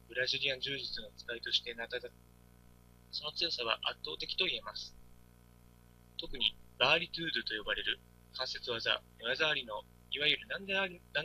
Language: Japanese